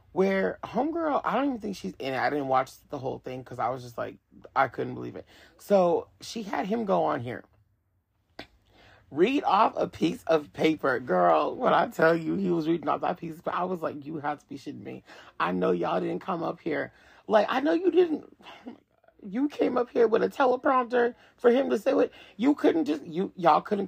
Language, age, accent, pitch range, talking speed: English, 30-49, American, 145-225 Hz, 220 wpm